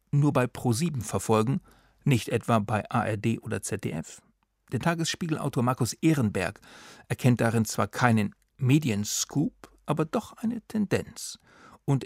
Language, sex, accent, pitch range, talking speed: German, male, German, 115-160 Hz, 120 wpm